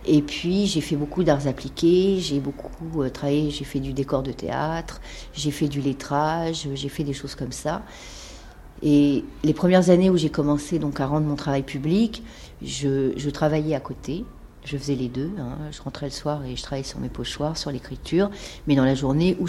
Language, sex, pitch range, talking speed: French, female, 135-160 Hz, 205 wpm